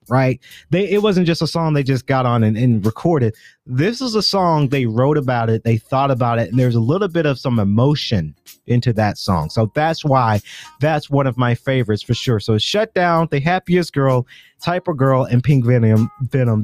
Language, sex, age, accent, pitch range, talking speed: English, male, 30-49, American, 120-170 Hz, 215 wpm